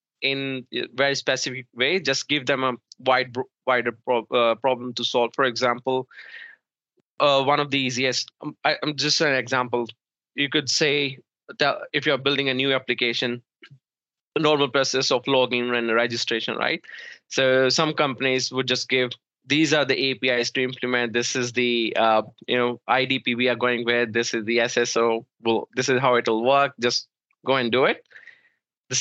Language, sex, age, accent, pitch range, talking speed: English, male, 20-39, Indian, 120-140 Hz, 170 wpm